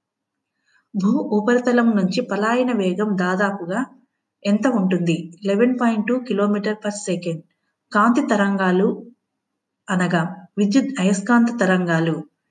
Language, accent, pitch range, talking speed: Telugu, native, 185-235 Hz, 95 wpm